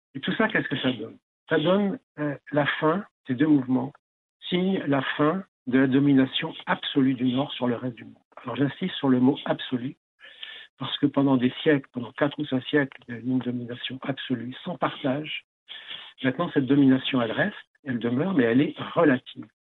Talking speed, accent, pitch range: 195 wpm, French, 125-150 Hz